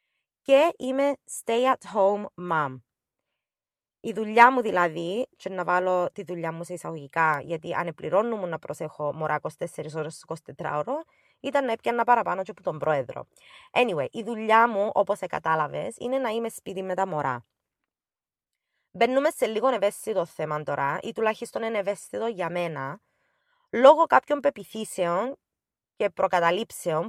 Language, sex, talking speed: Greek, female, 145 wpm